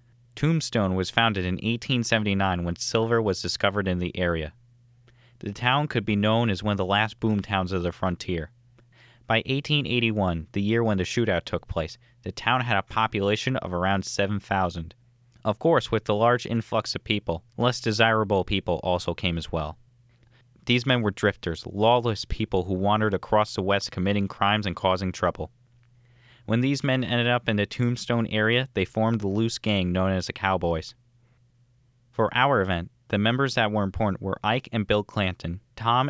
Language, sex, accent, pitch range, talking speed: English, male, American, 95-120 Hz, 180 wpm